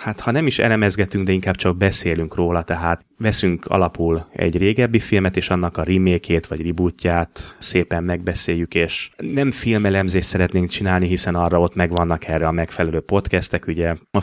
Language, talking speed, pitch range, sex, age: Hungarian, 165 wpm, 85-100 Hz, male, 30-49